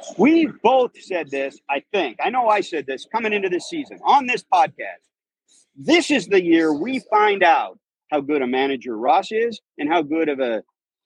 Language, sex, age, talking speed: English, male, 50-69, 195 wpm